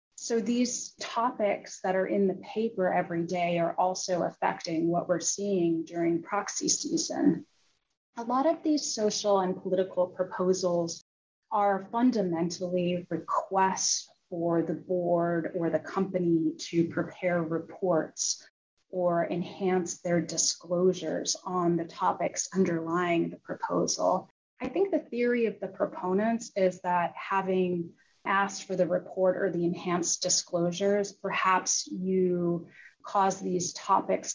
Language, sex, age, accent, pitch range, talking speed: English, female, 30-49, American, 170-200 Hz, 125 wpm